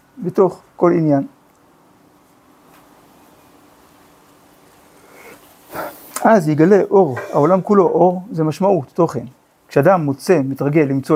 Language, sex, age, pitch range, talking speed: Hebrew, male, 50-69, 140-185 Hz, 85 wpm